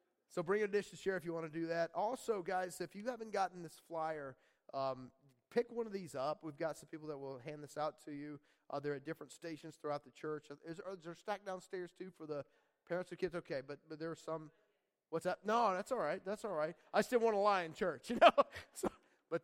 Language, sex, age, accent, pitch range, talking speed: English, male, 30-49, American, 145-185 Hz, 260 wpm